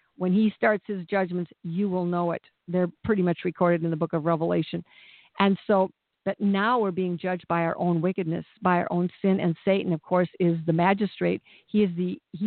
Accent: American